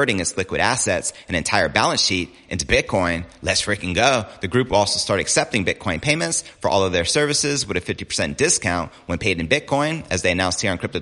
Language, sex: English, male